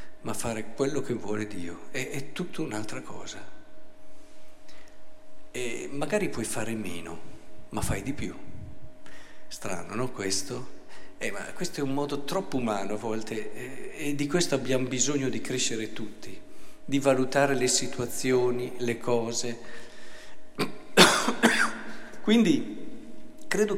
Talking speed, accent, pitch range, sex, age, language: 120 wpm, native, 120-180 Hz, male, 50-69, Italian